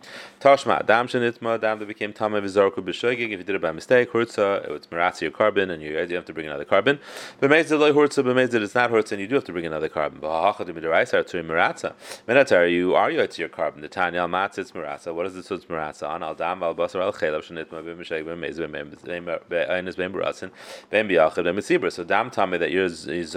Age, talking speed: 30-49, 230 wpm